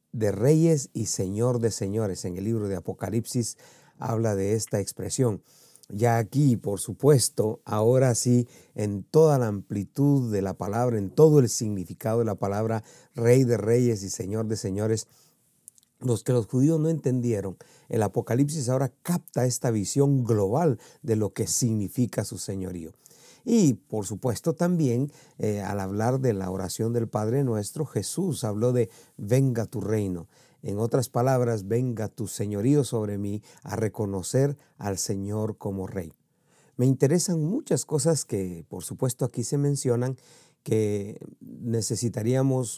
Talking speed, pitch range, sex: 150 wpm, 105-135 Hz, male